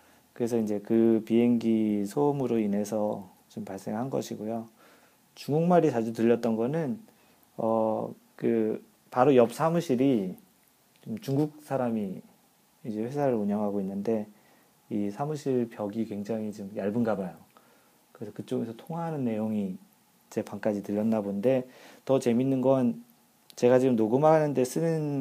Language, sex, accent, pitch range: Korean, male, native, 110-150 Hz